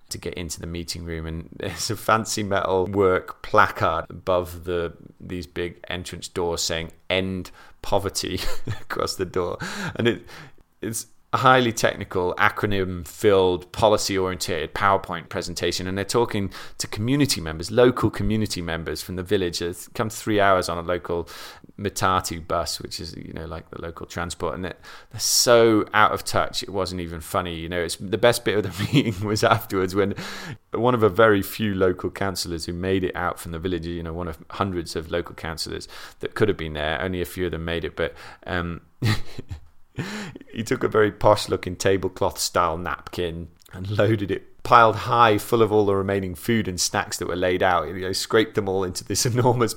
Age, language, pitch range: 20-39, English, 85-110 Hz